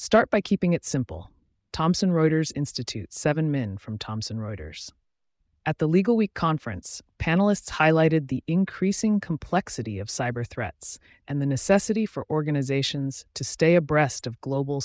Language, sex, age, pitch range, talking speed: English, female, 30-49, 115-160 Hz, 145 wpm